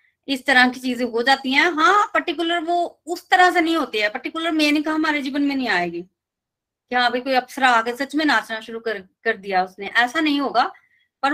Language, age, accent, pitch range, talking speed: Hindi, 20-39, native, 225-285 Hz, 210 wpm